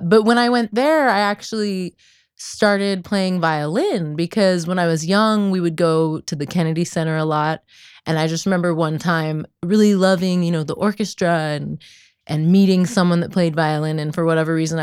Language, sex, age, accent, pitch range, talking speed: English, female, 20-39, American, 160-200 Hz, 190 wpm